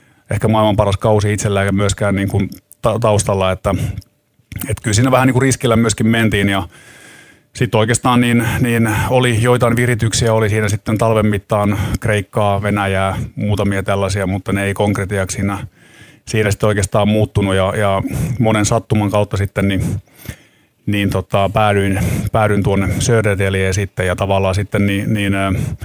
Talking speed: 140 wpm